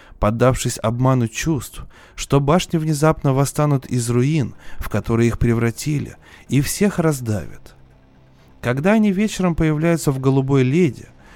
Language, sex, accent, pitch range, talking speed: Russian, male, native, 120-165 Hz, 120 wpm